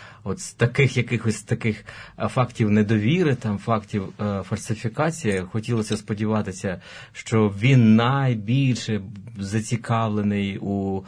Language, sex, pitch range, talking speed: Ukrainian, male, 100-120 Hz, 105 wpm